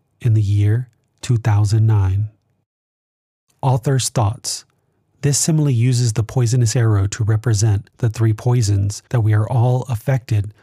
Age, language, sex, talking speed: 30-49, English, male, 125 wpm